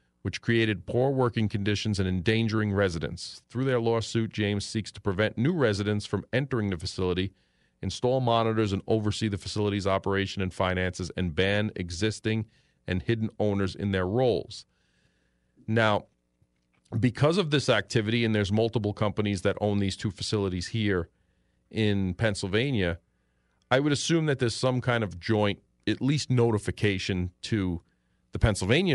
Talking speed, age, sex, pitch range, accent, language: 145 wpm, 40-59, male, 90-115 Hz, American, English